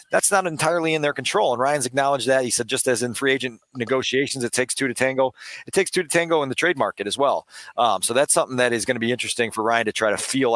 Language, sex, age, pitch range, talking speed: English, male, 40-59, 115-135 Hz, 285 wpm